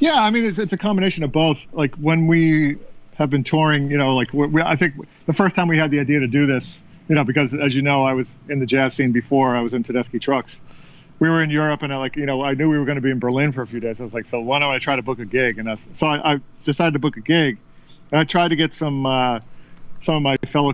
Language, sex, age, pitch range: English, male, 40-59, 125-155 Hz